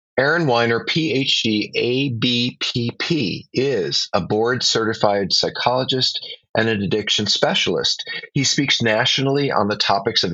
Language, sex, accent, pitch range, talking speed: English, male, American, 100-125 Hz, 110 wpm